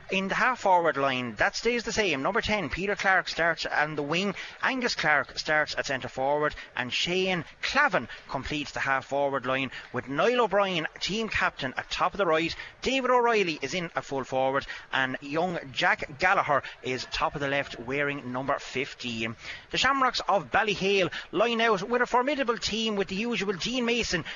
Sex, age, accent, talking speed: male, 30-49, Irish, 180 wpm